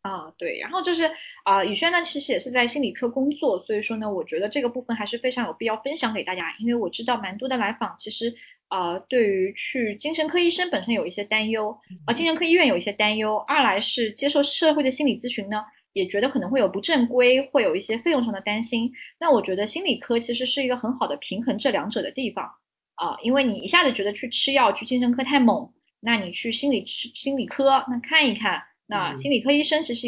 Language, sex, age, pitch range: Chinese, female, 10-29, 215-275 Hz